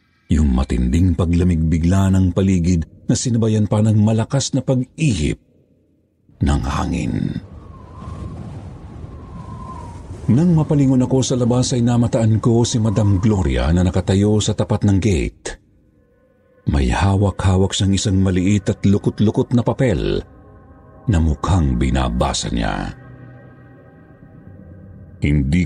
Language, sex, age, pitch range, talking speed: Filipino, male, 50-69, 85-105 Hz, 105 wpm